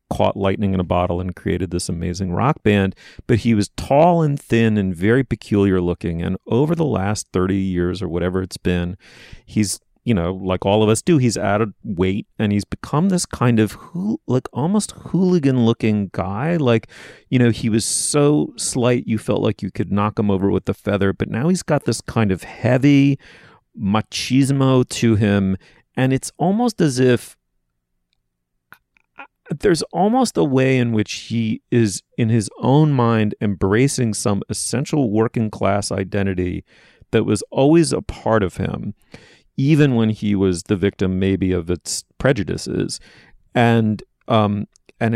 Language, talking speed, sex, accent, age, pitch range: English, 165 wpm, male, American, 30-49, 95-125 Hz